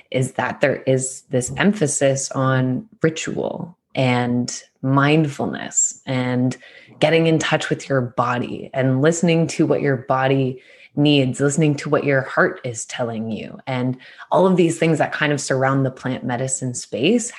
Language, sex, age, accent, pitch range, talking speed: English, female, 20-39, American, 130-150 Hz, 155 wpm